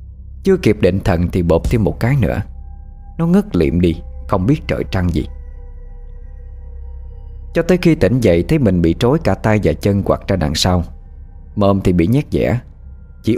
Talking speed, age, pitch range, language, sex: 190 wpm, 20-39, 85-115 Hz, Vietnamese, male